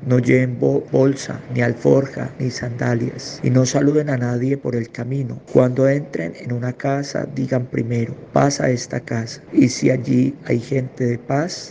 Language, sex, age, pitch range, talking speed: Spanish, male, 50-69, 120-135 Hz, 170 wpm